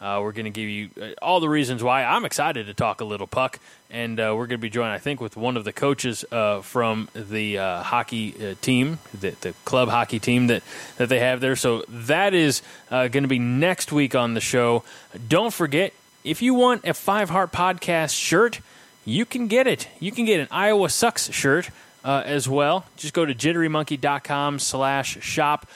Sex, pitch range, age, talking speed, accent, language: male, 115-150 Hz, 30-49, 205 wpm, American, English